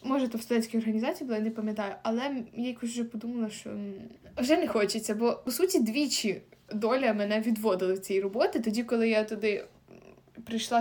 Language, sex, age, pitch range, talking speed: Ukrainian, female, 20-39, 215-270 Hz, 185 wpm